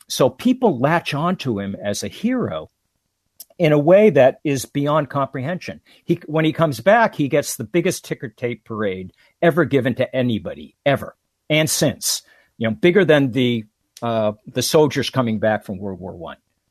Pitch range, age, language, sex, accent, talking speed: 110-155 Hz, 50-69, English, male, American, 170 wpm